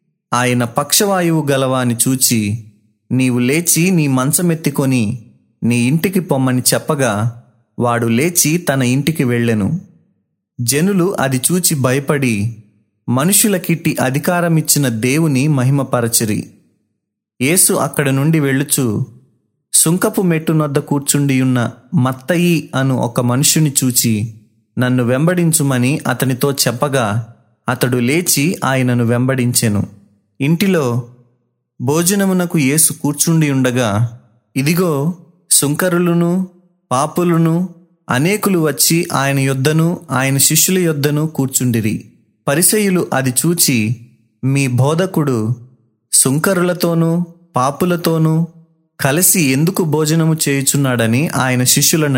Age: 30-49